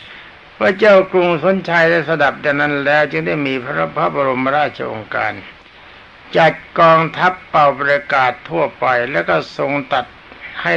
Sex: male